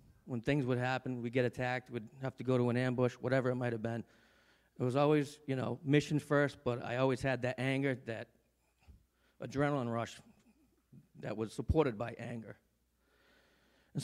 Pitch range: 120-150 Hz